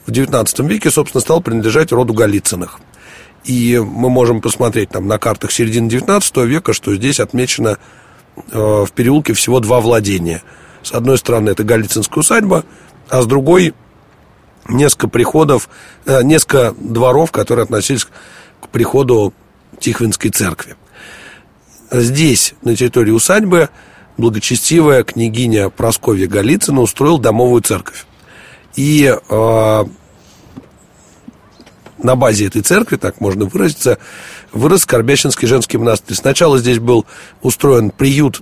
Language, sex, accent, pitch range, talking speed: Russian, male, native, 110-130 Hz, 115 wpm